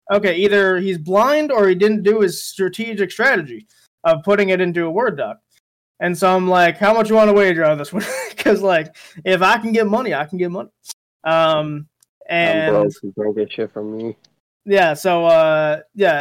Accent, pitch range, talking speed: American, 155-195 Hz, 195 wpm